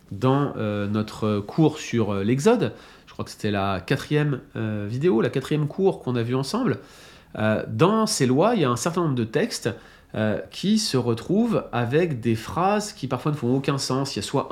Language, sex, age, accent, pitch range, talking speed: French, male, 30-49, French, 110-145 Hz, 190 wpm